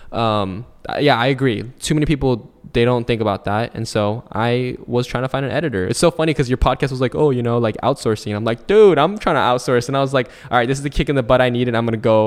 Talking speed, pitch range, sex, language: 300 wpm, 105-130 Hz, male, English